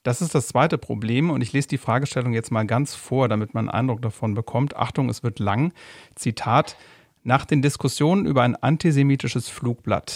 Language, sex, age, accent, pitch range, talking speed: German, male, 40-59, German, 115-145 Hz, 190 wpm